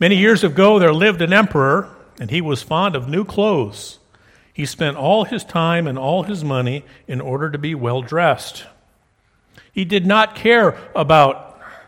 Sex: male